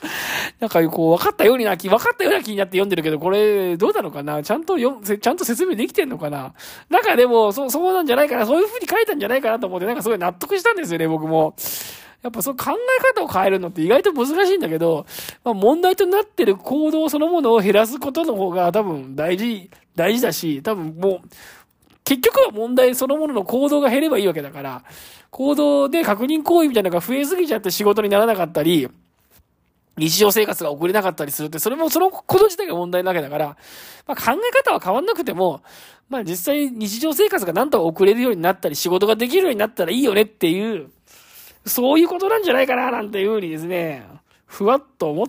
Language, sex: Japanese, male